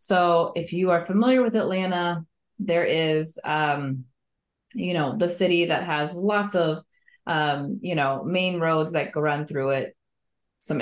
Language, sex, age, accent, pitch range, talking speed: English, female, 20-39, American, 150-195 Hz, 160 wpm